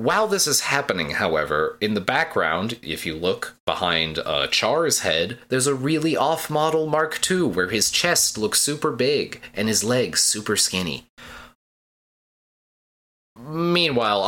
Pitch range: 90-130 Hz